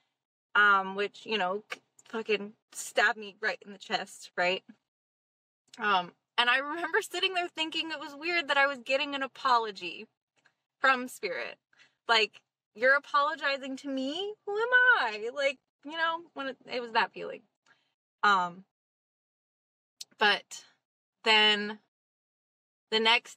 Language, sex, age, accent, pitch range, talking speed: English, female, 20-39, American, 210-295 Hz, 135 wpm